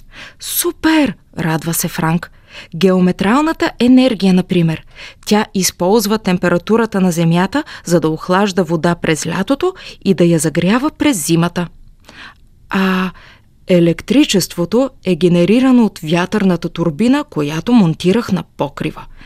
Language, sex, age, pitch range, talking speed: Bulgarian, female, 20-39, 165-235 Hz, 110 wpm